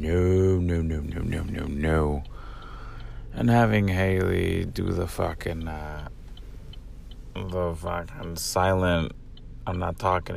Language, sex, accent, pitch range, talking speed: English, male, American, 85-120 Hz, 115 wpm